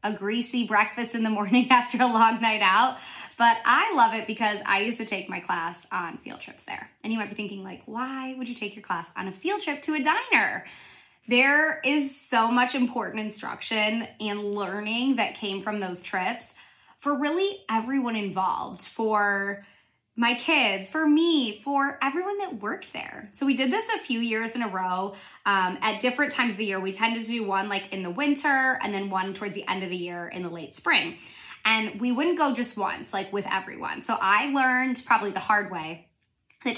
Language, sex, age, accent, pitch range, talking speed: English, female, 20-39, American, 205-270 Hz, 210 wpm